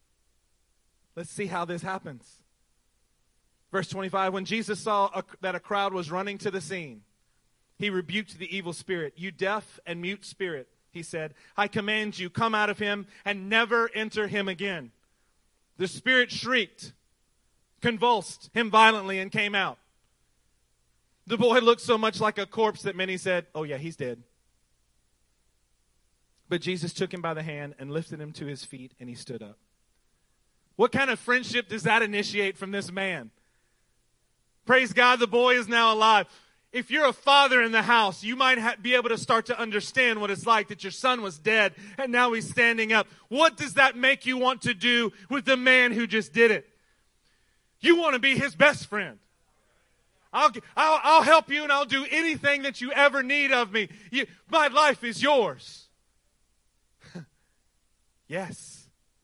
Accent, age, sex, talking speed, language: American, 30-49, male, 170 wpm, English